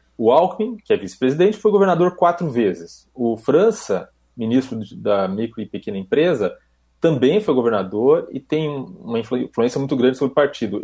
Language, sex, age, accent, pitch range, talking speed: Portuguese, male, 30-49, Brazilian, 115-175 Hz, 160 wpm